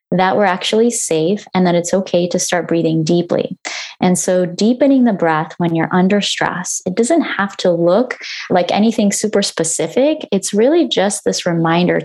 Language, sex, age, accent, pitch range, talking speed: English, female, 20-39, American, 170-215 Hz, 175 wpm